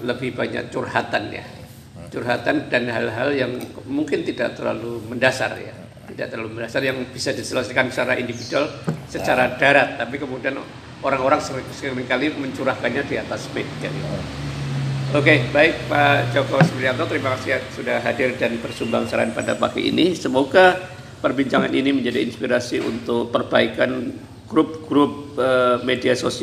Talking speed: 125 wpm